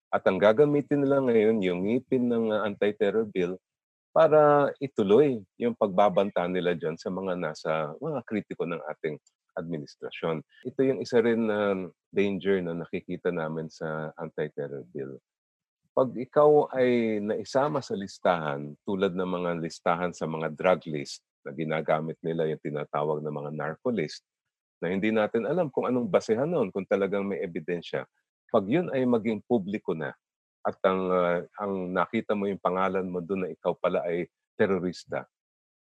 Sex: male